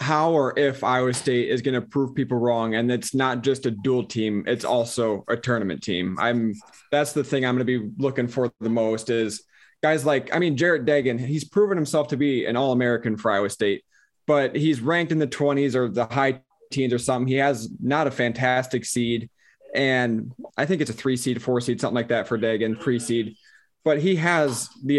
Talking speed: 215 wpm